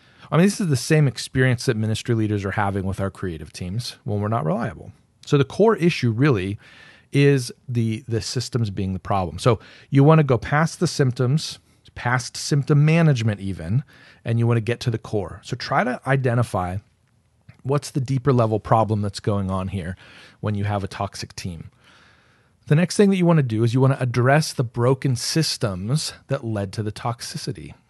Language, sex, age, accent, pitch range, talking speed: English, male, 40-59, American, 105-140 Hz, 200 wpm